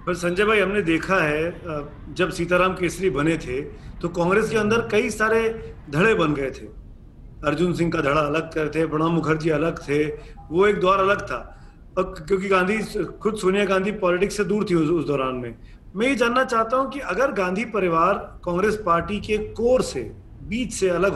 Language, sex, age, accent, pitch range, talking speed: Hindi, male, 40-59, native, 165-215 Hz, 190 wpm